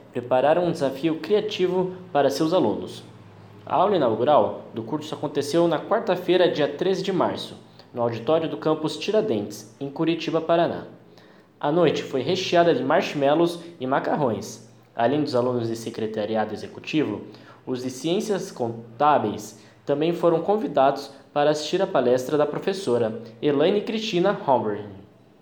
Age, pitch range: 10-29, 130-180 Hz